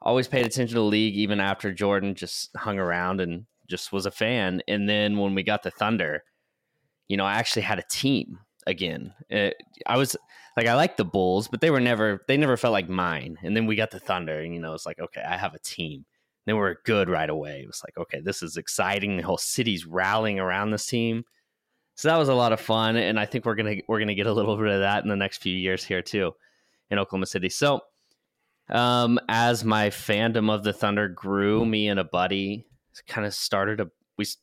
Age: 20-39